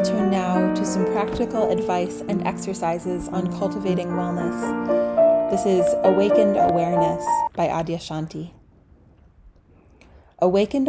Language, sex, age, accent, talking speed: English, female, 30-49, American, 105 wpm